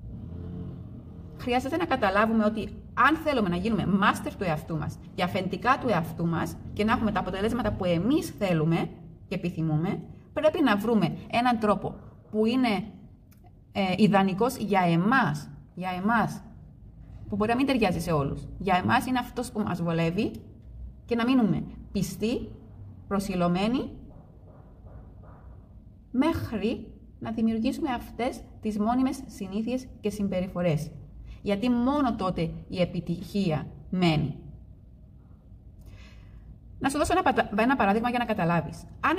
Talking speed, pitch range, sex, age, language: 125 wpm, 155-230 Hz, female, 30-49, Greek